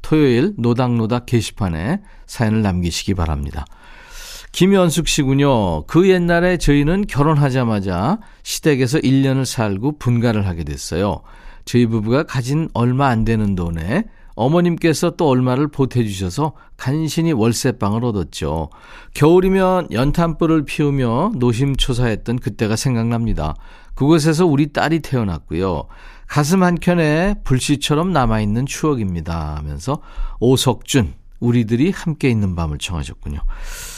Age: 40-59